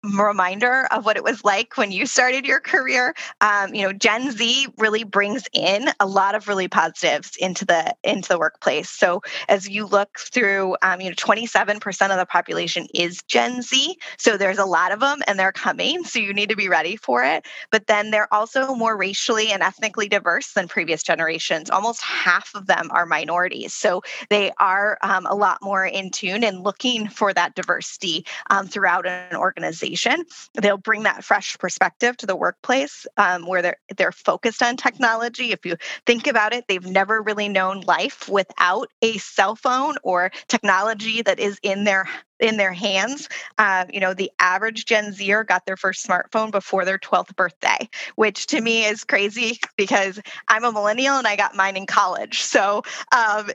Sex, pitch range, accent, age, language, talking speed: female, 190-230 Hz, American, 20-39, English, 185 wpm